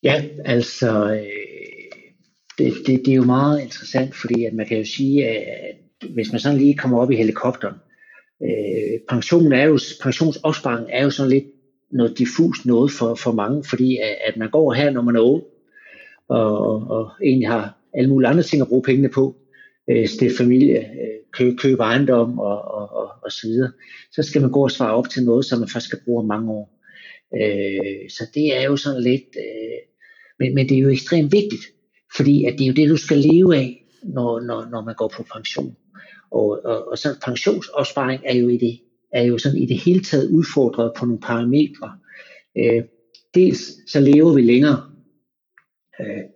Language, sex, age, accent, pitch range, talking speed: Danish, male, 60-79, native, 120-150 Hz, 195 wpm